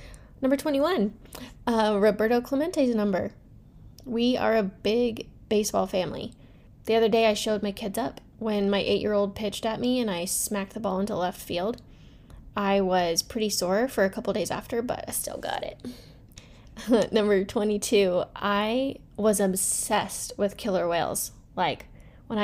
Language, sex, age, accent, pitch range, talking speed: English, female, 10-29, American, 195-230 Hz, 155 wpm